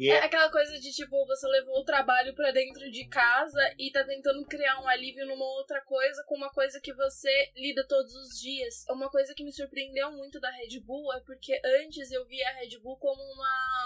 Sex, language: female, Portuguese